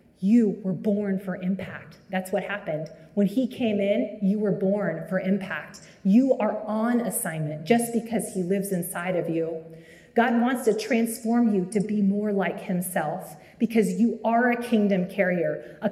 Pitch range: 190-230 Hz